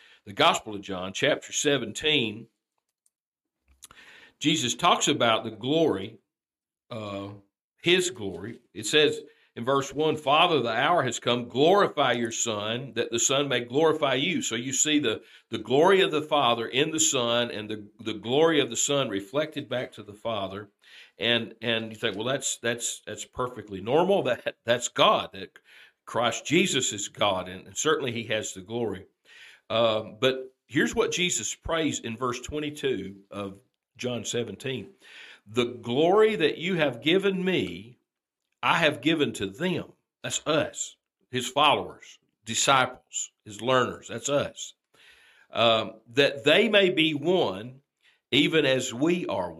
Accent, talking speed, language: American, 150 wpm, English